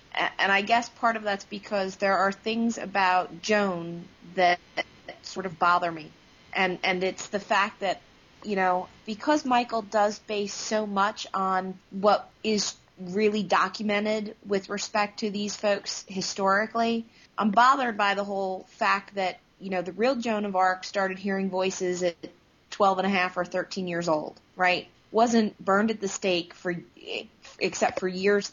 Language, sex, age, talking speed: English, female, 30-49, 165 wpm